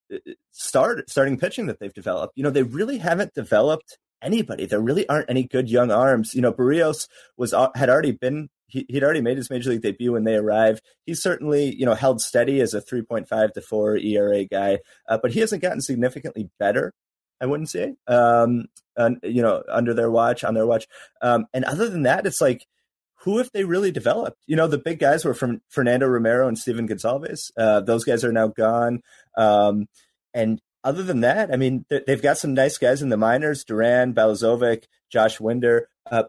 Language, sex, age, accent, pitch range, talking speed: English, male, 30-49, American, 115-155 Hz, 200 wpm